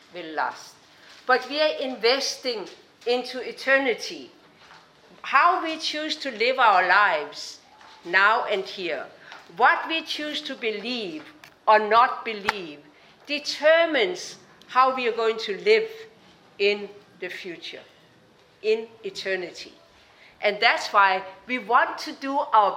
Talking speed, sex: 120 wpm, female